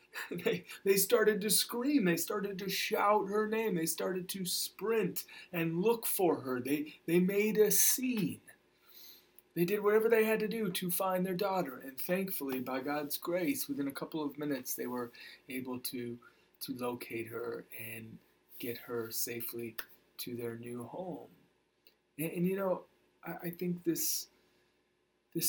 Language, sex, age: English, male, 30-49